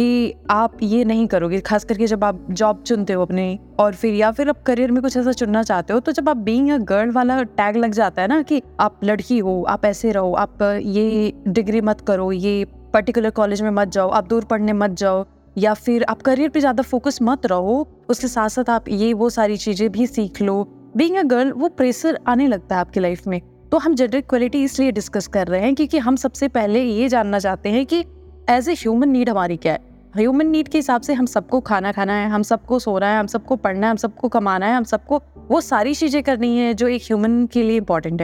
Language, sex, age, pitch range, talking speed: Hindi, female, 20-39, 210-255 Hz, 235 wpm